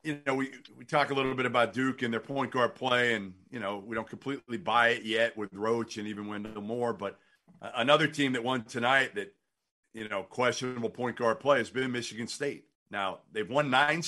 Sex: male